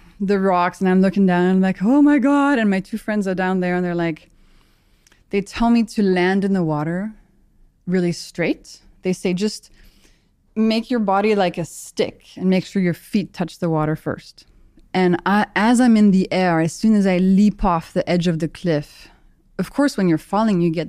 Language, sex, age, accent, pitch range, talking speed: English, female, 20-39, American, 175-230 Hz, 215 wpm